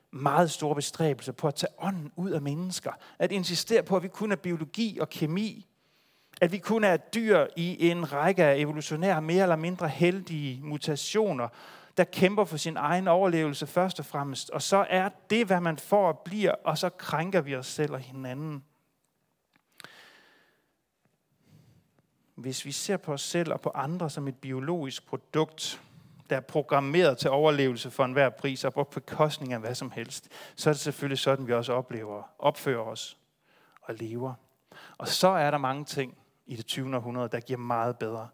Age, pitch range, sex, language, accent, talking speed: 30-49, 135-175 Hz, male, Danish, native, 180 wpm